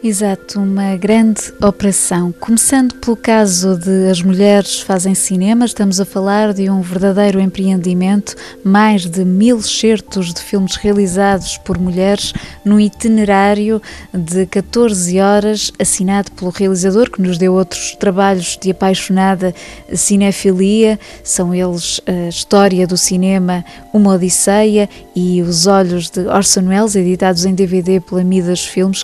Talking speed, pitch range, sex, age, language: 130 wpm, 185-210 Hz, female, 20-39, Portuguese